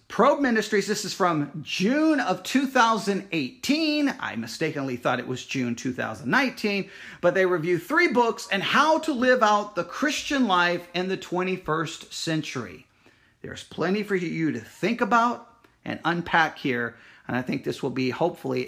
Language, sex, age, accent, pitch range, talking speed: English, male, 40-59, American, 140-215 Hz, 155 wpm